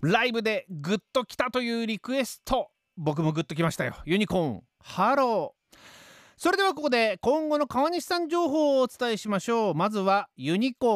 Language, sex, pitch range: Japanese, male, 195-280 Hz